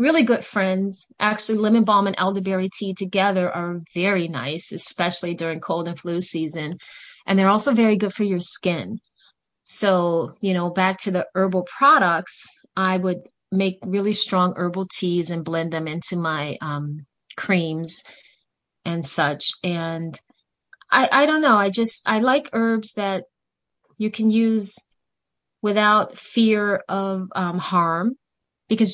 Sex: female